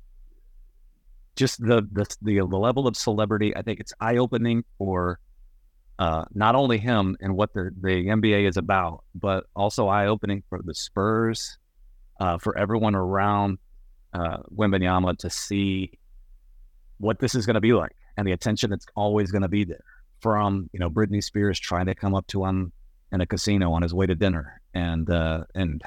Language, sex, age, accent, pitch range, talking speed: English, male, 30-49, American, 90-105 Hz, 180 wpm